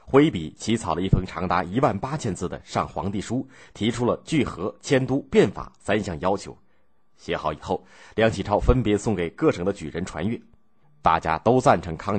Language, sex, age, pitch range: Chinese, male, 30-49, 85-125 Hz